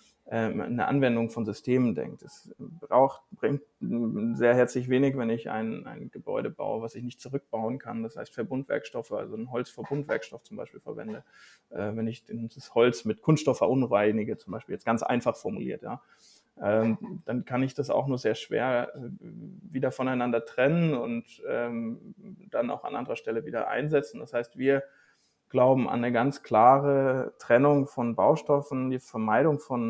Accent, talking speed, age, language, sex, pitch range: German, 155 wpm, 20-39, German, male, 115-145 Hz